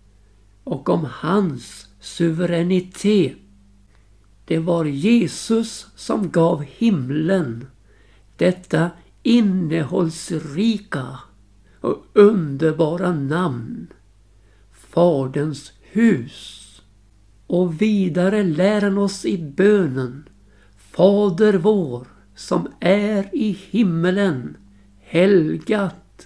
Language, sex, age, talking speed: Swedish, male, 60-79, 70 wpm